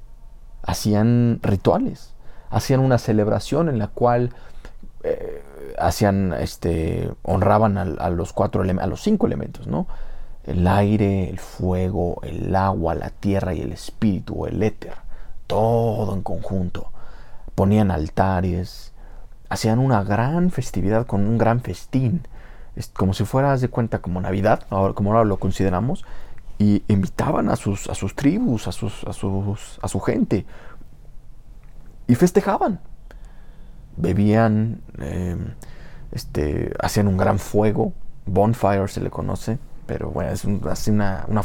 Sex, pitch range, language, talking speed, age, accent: male, 95-120 Hz, English, 135 wpm, 40-59, Mexican